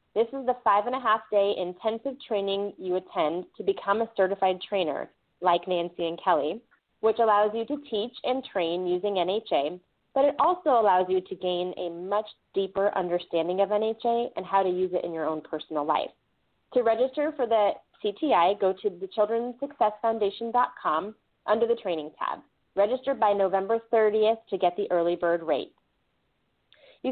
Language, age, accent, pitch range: English, 30-49, American, 180-240 Hz